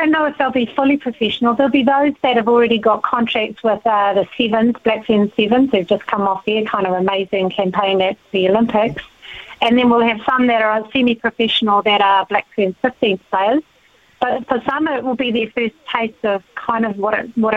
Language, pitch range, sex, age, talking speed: English, 205-235 Hz, female, 30-49, 220 wpm